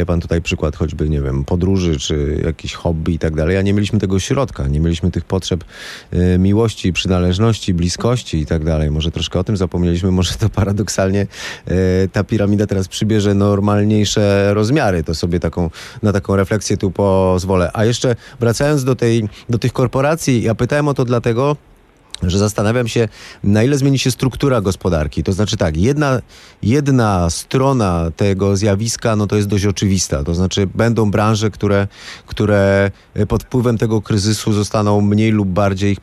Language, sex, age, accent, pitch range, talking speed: Polish, male, 30-49, native, 95-115 Hz, 170 wpm